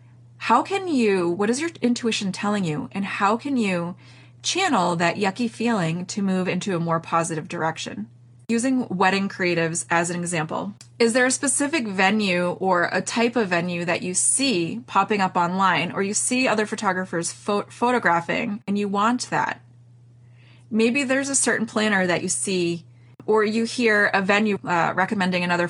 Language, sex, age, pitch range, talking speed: English, female, 30-49, 165-215 Hz, 170 wpm